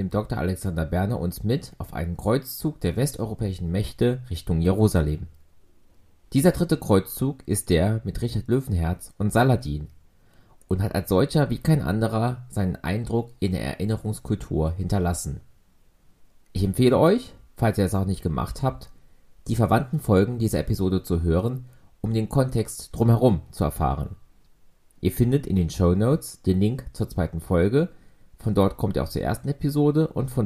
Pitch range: 90-120 Hz